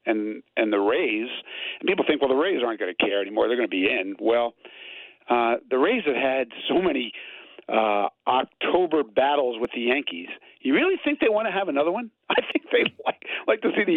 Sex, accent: male, American